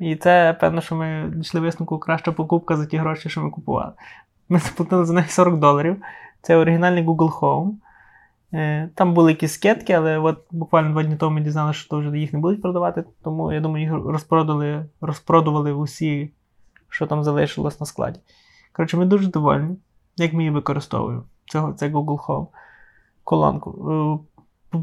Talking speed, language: 165 wpm, Ukrainian